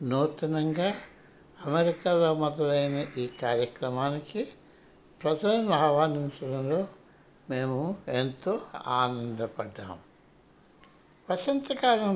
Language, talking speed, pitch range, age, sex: Telugu, 55 wpm, 135-175 Hz, 60-79, male